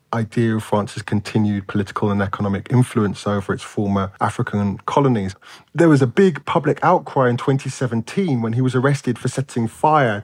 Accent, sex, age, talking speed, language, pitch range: British, male, 20-39, 165 wpm, English, 110-135 Hz